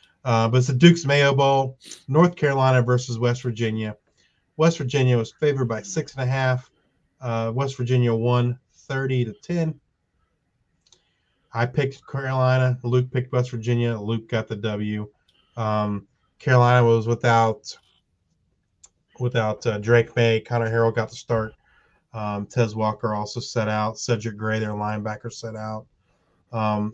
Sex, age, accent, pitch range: male, 30-49, American, 110-130 Hz